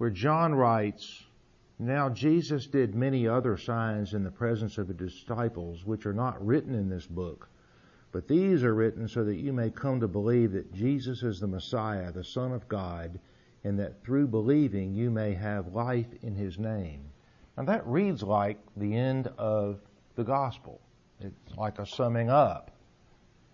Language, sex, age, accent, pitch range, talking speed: English, male, 50-69, American, 105-130 Hz, 170 wpm